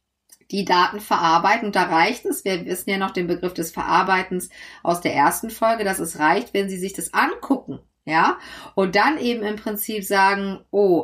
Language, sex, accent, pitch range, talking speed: German, female, German, 175-210 Hz, 190 wpm